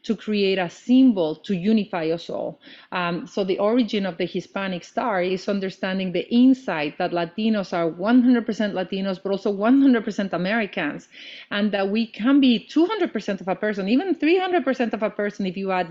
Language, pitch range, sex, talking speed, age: English, 180-225 Hz, female, 175 wpm, 30-49